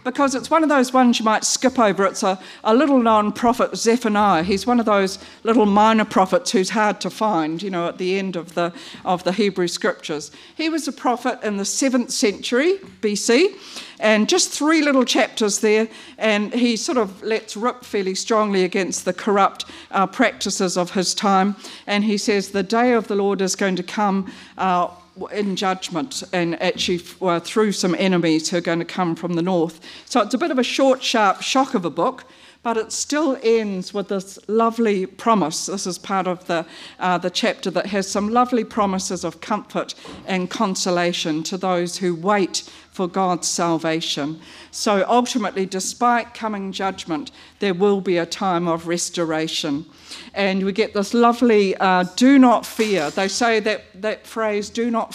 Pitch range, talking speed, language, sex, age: 180-230 Hz, 185 wpm, English, female, 50-69